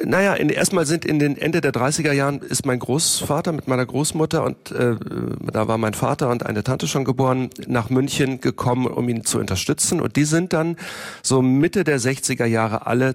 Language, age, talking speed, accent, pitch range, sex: German, 40-59, 195 wpm, German, 115-140 Hz, male